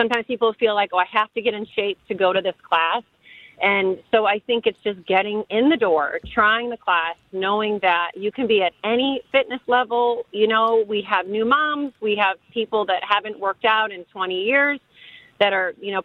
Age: 40-59